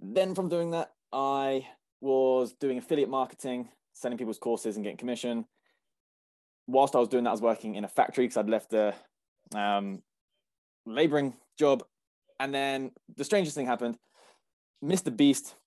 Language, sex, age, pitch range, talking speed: English, male, 20-39, 110-130 Hz, 155 wpm